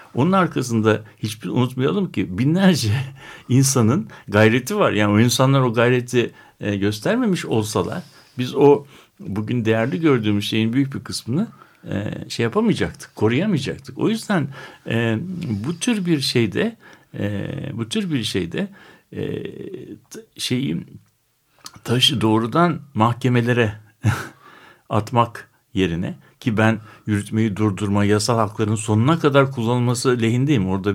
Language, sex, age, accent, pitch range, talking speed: Turkish, male, 60-79, native, 110-145 Hz, 120 wpm